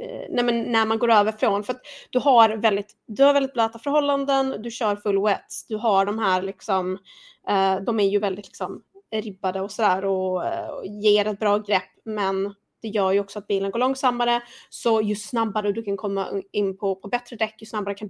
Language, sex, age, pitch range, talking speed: Swedish, female, 20-39, 195-235 Hz, 210 wpm